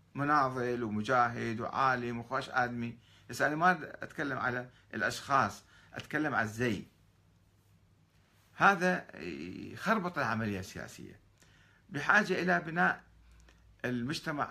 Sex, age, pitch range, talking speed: male, 50-69, 95-140 Hz, 90 wpm